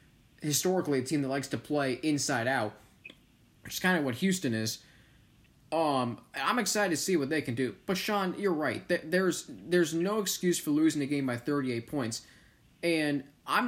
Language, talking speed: English, 185 wpm